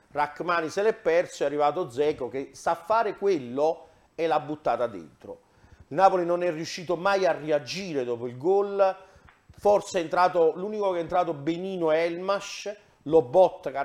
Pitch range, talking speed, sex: 140-180 Hz, 165 wpm, male